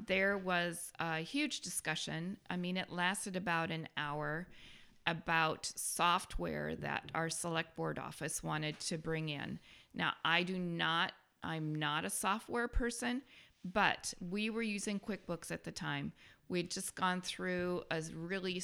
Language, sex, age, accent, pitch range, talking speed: English, female, 40-59, American, 160-185 Hz, 150 wpm